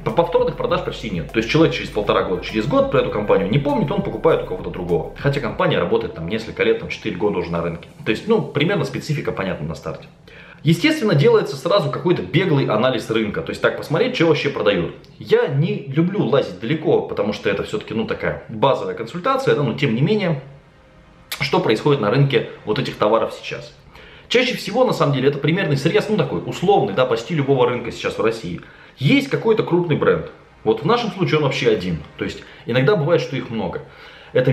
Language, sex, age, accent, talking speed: Russian, male, 20-39, native, 205 wpm